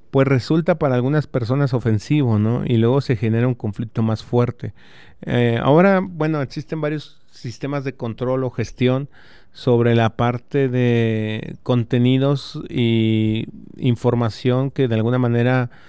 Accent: Mexican